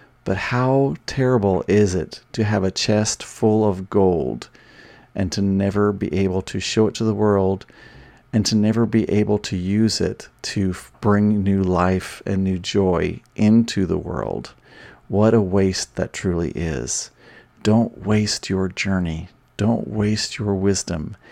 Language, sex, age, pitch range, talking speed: English, male, 40-59, 95-110 Hz, 155 wpm